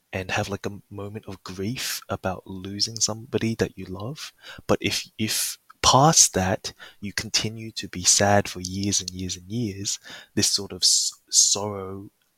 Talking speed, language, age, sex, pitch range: 170 wpm, English, 20-39, male, 95-105 Hz